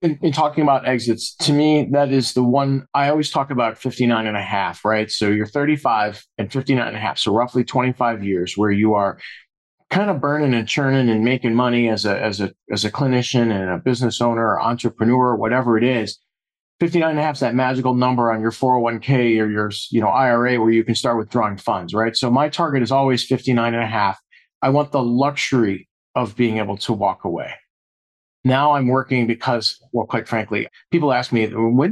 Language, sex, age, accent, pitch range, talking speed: English, male, 40-59, American, 115-145 Hz, 210 wpm